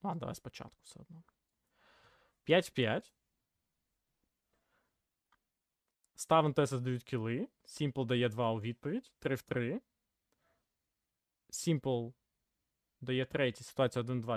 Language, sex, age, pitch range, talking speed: Ukrainian, male, 20-39, 125-165 Hz, 105 wpm